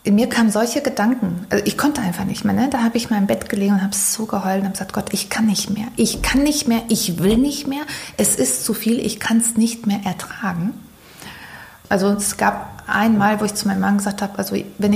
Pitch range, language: 195-230 Hz, German